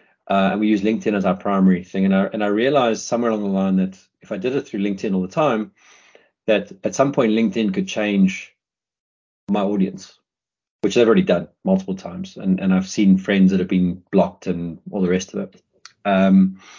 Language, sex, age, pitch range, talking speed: English, male, 30-49, 95-110 Hz, 210 wpm